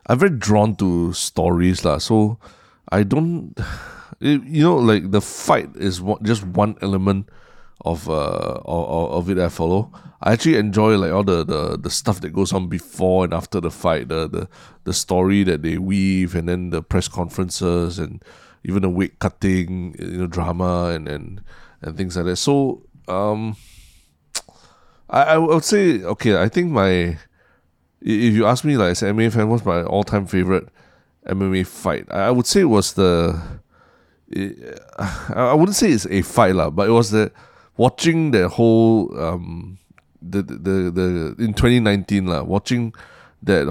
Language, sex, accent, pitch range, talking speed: English, male, Malaysian, 90-105 Hz, 170 wpm